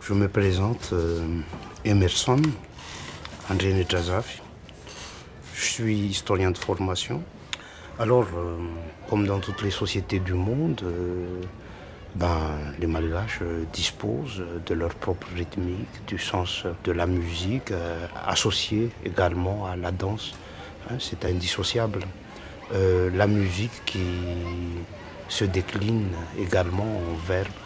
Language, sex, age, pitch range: French, male, 60-79, 90-110 Hz